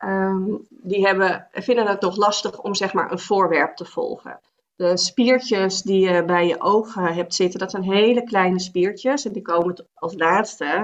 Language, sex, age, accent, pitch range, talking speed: Dutch, female, 40-59, Dutch, 175-205 Hz, 185 wpm